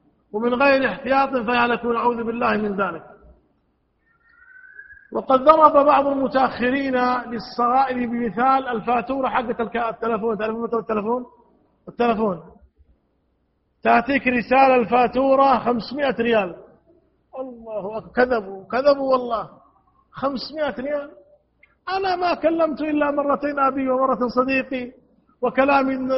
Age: 50-69